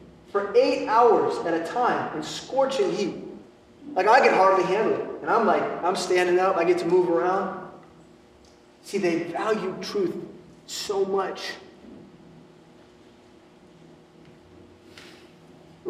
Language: English